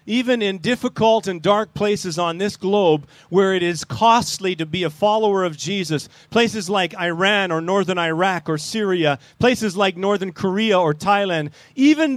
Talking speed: 170 wpm